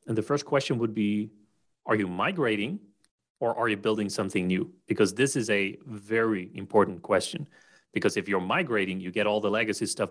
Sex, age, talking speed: male, 30-49, 190 wpm